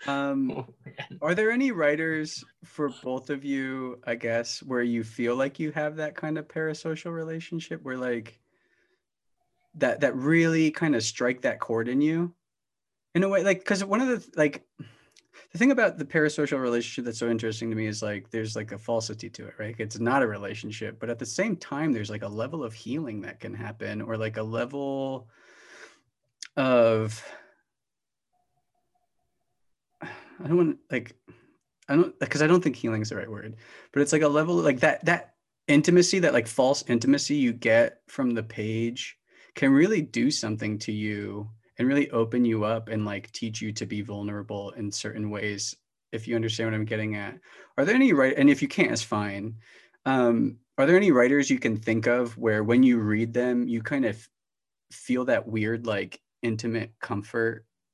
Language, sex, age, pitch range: English, male, 30-49, 110-150 Hz